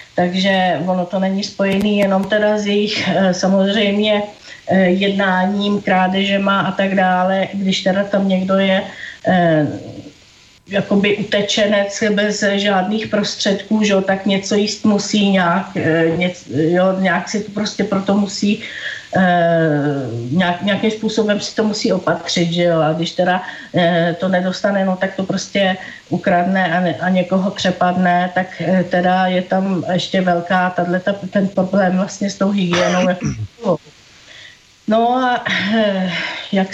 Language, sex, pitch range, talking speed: Slovak, female, 185-215 Hz, 125 wpm